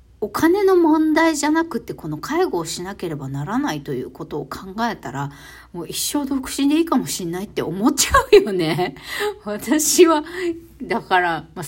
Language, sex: Japanese, female